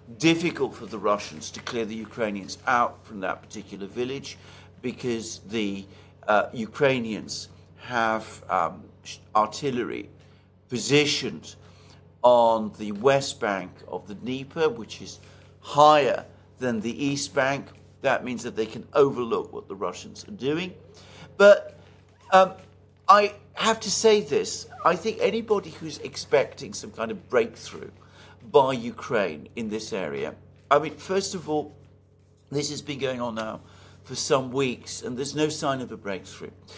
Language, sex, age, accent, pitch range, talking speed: English, male, 50-69, British, 105-150 Hz, 145 wpm